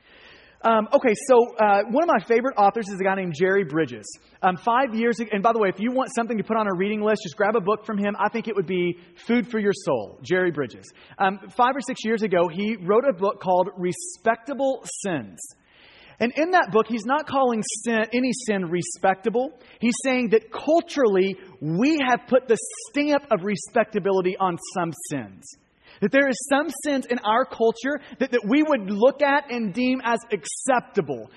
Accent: American